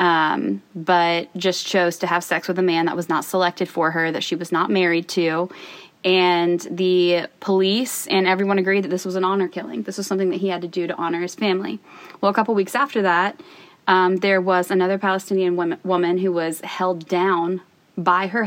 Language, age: English, 20-39